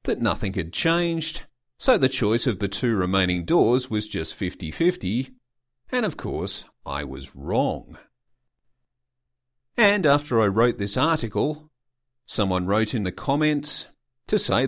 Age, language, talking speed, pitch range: 40-59, English, 140 wpm, 105-140 Hz